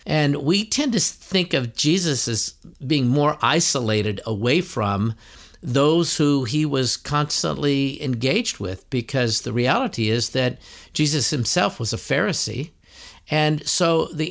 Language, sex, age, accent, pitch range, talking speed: English, male, 50-69, American, 115-155 Hz, 140 wpm